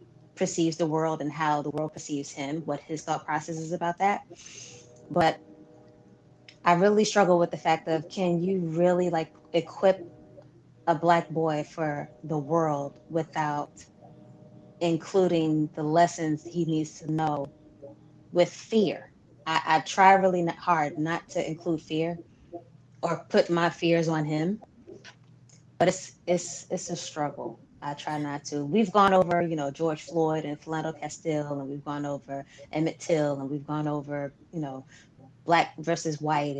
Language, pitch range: English, 145-170 Hz